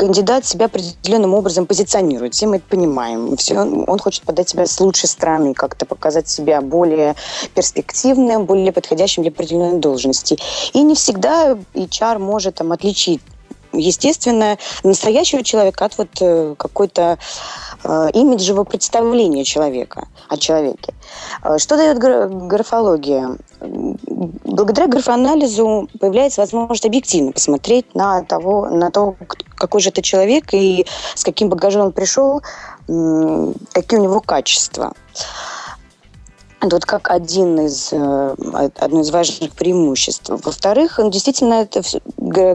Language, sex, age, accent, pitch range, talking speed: Russian, female, 20-39, native, 165-220 Hz, 115 wpm